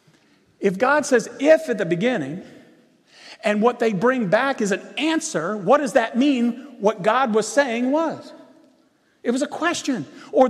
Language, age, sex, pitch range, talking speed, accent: English, 40-59, male, 185-280 Hz, 165 wpm, American